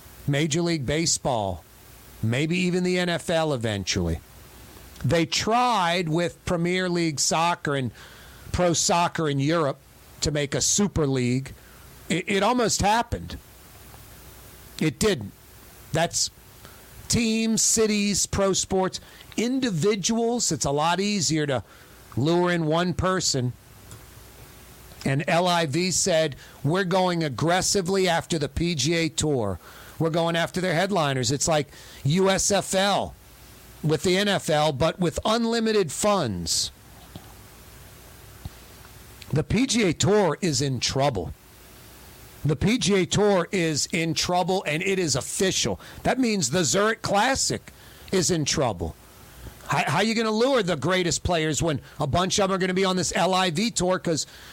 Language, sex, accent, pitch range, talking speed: English, male, American, 135-190 Hz, 130 wpm